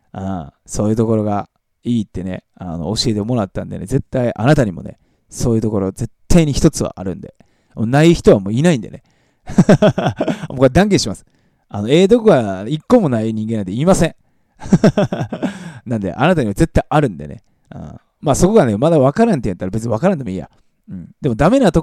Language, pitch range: Japanese, 95-130 Hz